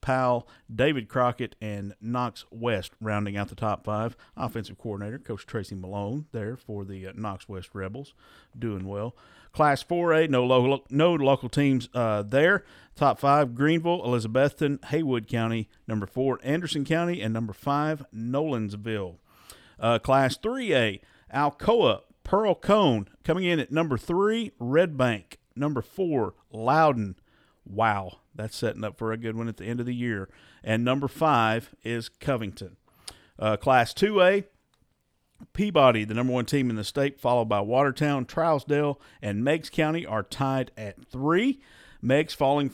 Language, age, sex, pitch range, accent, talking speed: English, 50-69, male, 110-145 Hz, American, 150 wpm